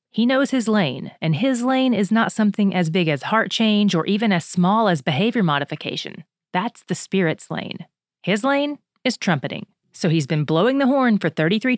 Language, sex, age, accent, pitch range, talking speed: English, female, 30-49, American, 170-225 Hz, 195 wpm